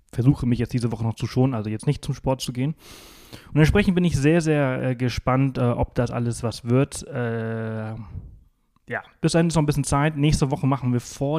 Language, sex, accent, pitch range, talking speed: German, male, German, 110-130 Hz, 225 wpm